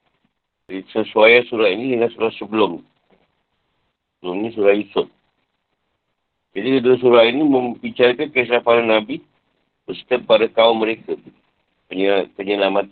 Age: 50-69